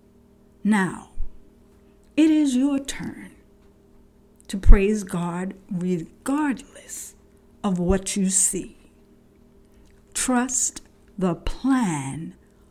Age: 60-79